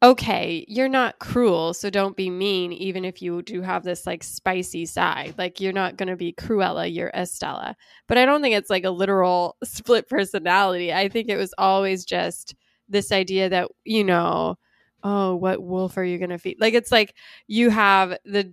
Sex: female